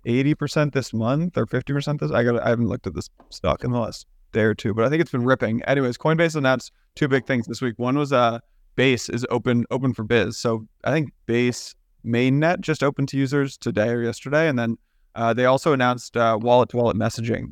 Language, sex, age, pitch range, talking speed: English, male, 20-39, 115-135 Hz, 230 wpm